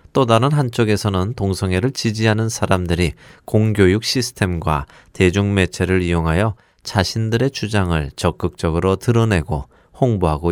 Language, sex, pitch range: Korean, male, 90-115 Hz